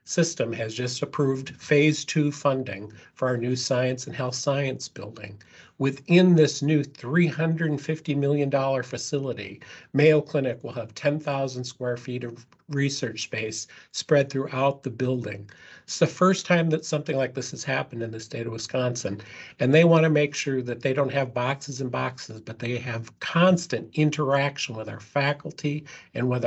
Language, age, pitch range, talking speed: English, 50-69, 120-150 Hz, 165 wpm